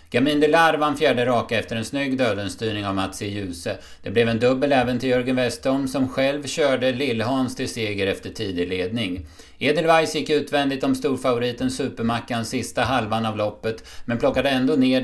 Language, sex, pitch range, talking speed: Swedish, male, 100-135 Hz, 170 wpm